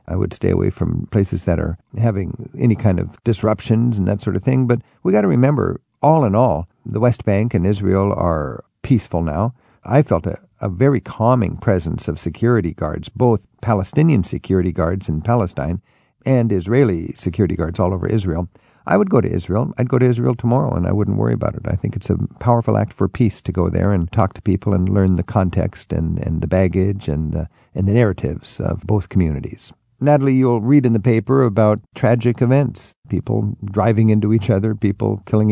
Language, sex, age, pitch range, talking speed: English, male, 50-69, 95-120 Hz, 205 wpm